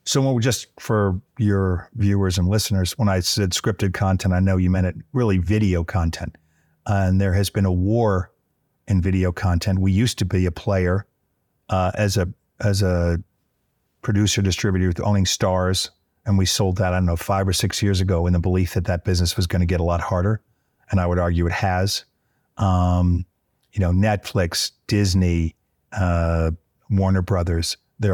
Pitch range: 90-105 Hz